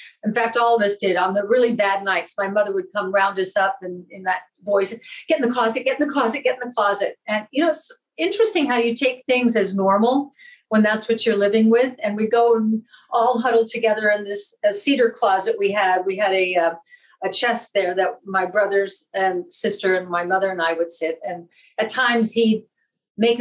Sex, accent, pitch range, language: female, American, 200-250 Hz, English